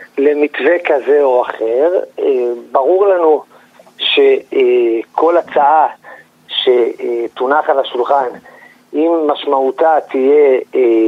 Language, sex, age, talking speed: Hebrew, male, 50-69, 75 wpm